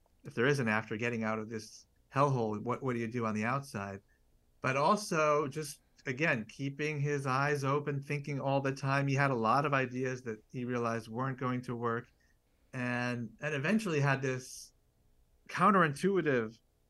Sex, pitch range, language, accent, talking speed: male, 115-140 Hz, English, American, 170 wpm